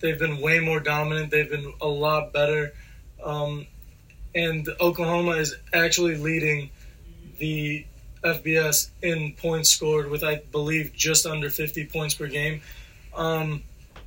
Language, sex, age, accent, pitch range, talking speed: English, male, 20-39, American, 150-170 Hz, 130 wpm